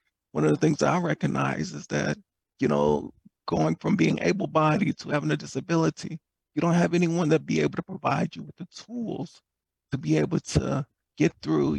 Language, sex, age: English, male, 40-59